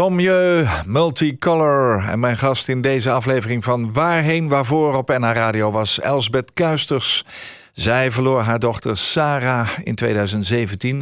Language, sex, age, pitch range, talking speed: Dutch, male, 50-69, 105-145 Hz, 130 wpm